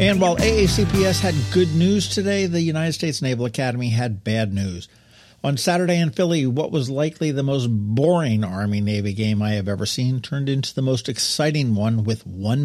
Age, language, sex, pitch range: 50-69, English, male, 110-145 Hz